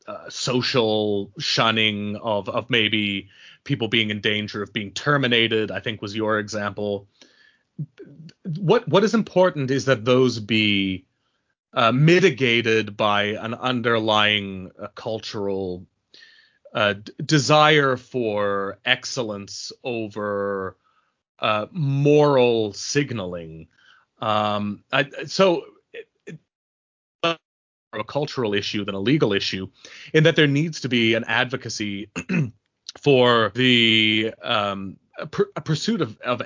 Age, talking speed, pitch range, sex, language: 30-49, 105 wpm, 105-145 Hz, male, English